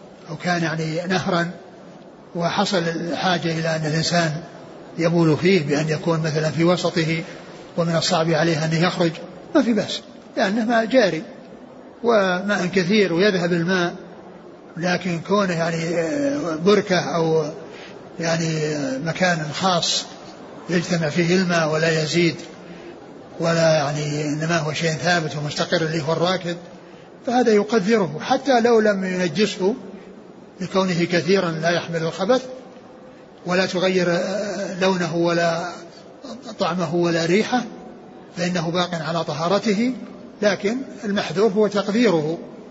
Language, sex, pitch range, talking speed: Arabic, male, 165-200 Hz, 110 wpm